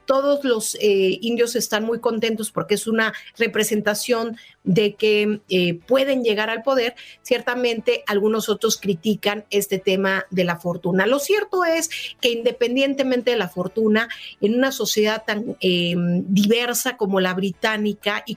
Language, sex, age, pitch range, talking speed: Spanish, female, 50-69, 195-245 Hz, 145 wpm